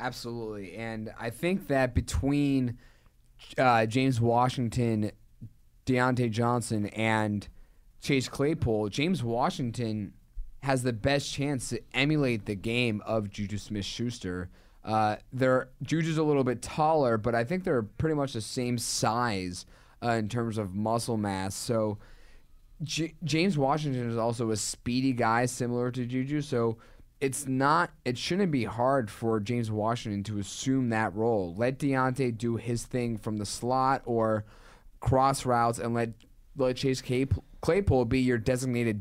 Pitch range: 110-130 Hz